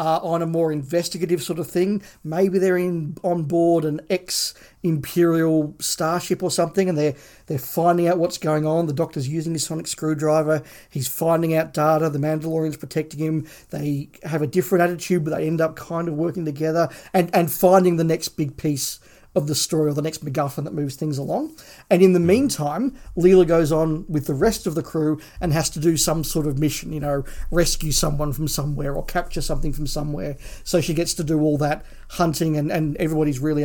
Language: English